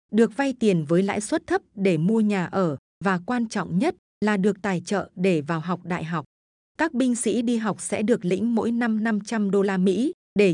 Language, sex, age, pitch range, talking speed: Vietnamese, female, 20-39, 185-230 Hz, 220 wpm